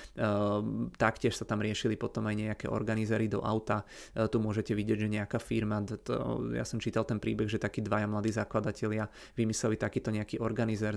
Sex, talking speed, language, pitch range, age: male, 170 wpm, Czech, 105-115 Hz, 30-49